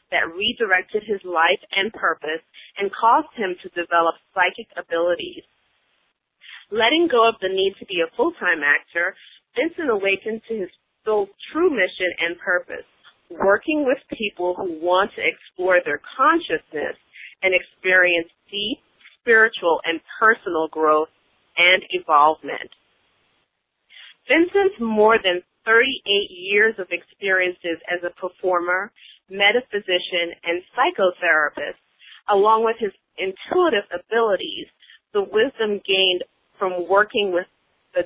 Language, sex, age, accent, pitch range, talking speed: English, female, 40-59, American, 175-225 Hz, 120 wpm